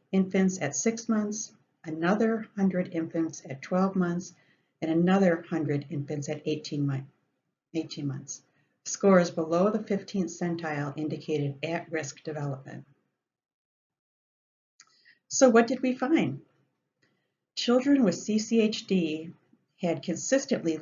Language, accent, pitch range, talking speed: English, American, 155-195 Hz, 105 wpm